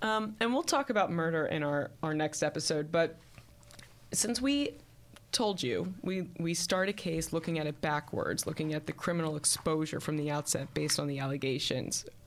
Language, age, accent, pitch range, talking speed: English, 20-39, American, 140-175 Hz, 180 wpm